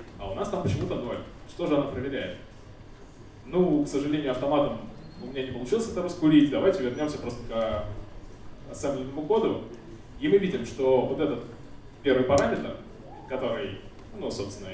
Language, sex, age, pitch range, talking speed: Russian, male, 20-39, 110-140 Hz, 150 wpm